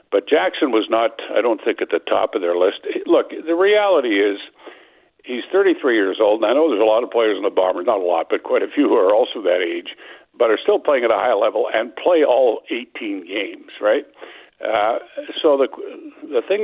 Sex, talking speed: male, 225 wpm